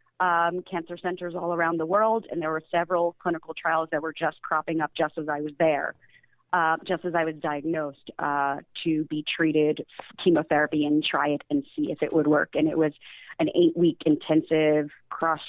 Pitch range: 150-180 Hz